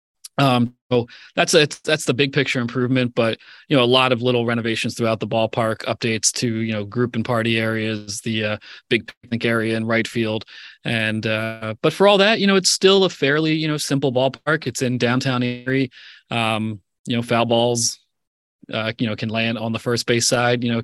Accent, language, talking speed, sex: American, English, 215 wpm, male